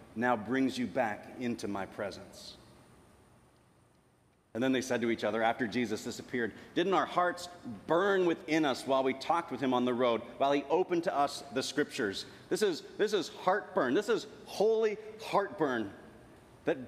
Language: English